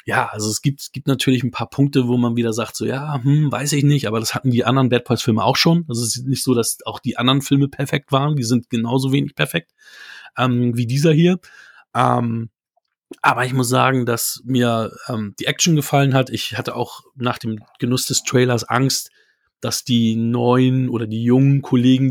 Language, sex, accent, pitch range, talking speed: German, male, German, 120-135 Hz, 215 wpm